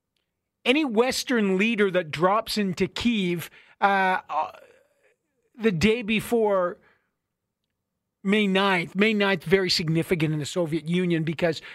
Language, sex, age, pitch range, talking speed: English, male, 50-69, 175-210 Hz, 110 wpm